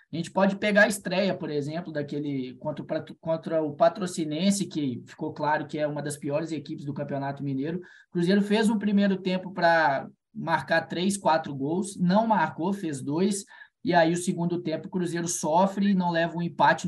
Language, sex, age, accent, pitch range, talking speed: Portuguese, male, 20-39, Brazilian, 155-185 Hz, 185 wpm